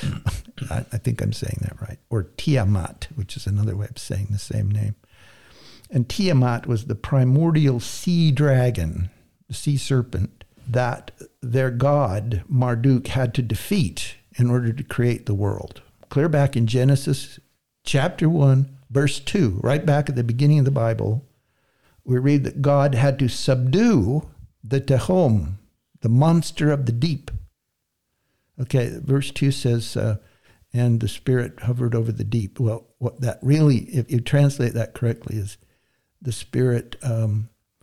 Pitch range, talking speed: 110-135 Hz, 150 wpm